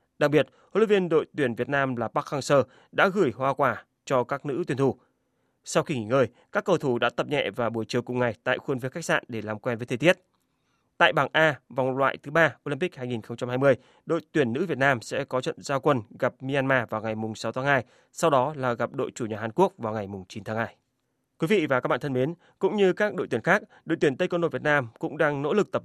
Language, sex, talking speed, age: Vietnamese, male, 260 wpm, 20-39